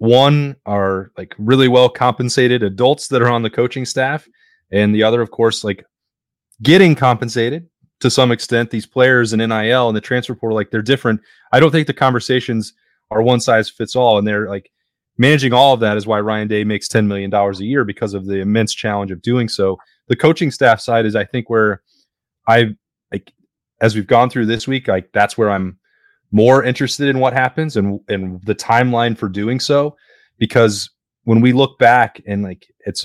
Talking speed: 200 wpm